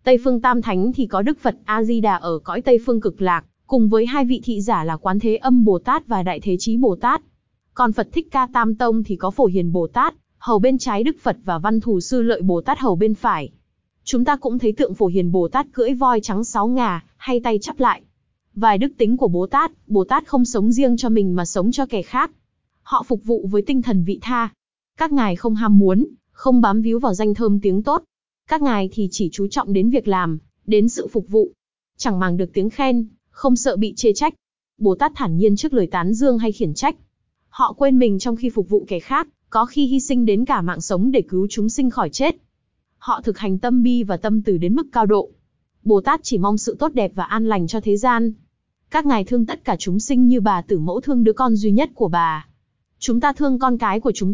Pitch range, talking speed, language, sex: 200-255 Hz, 250 wpm, Vietnamese, female